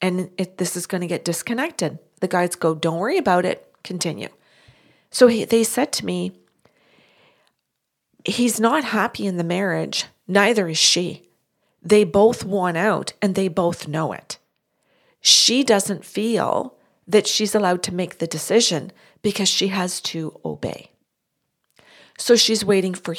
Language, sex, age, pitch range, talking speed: English, female, 40-59, 170-210 Hz, 145 wpm